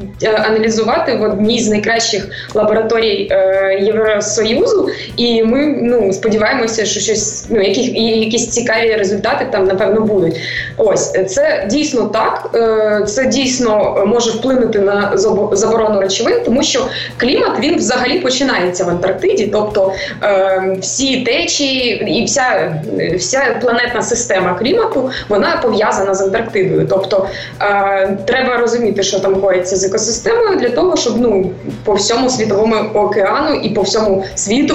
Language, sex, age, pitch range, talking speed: Ukrainian, female, 20-39, 195-230 Hz, 130 wpm